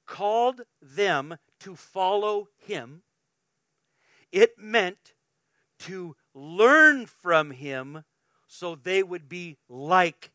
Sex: male